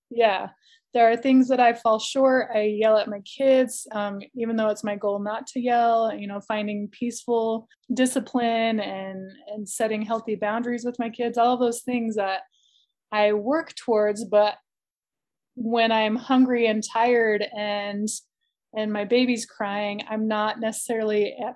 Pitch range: 210-240 Hz